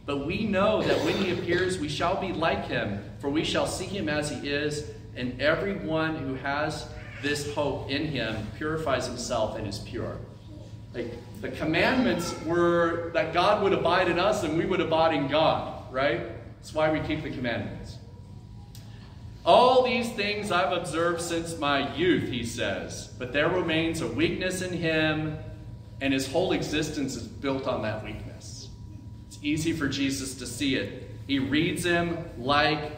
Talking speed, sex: 165 wpm, male